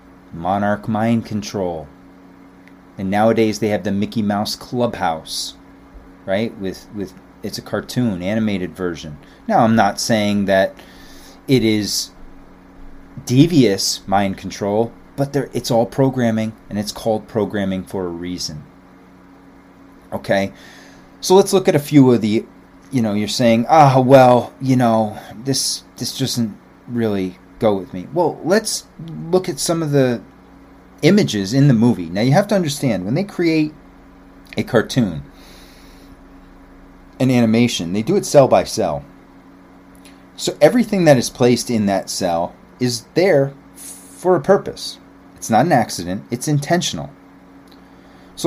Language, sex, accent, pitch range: English, male, American, 90-120 Hz